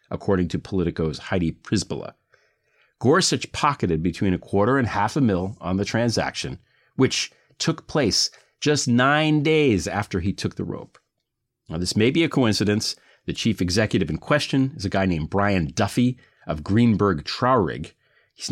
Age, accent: 40-59, American